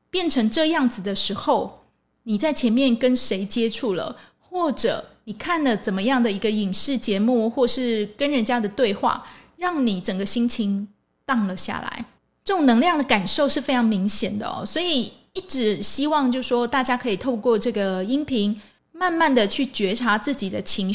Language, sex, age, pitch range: Chinese, female, 20-39, 210-280 Hz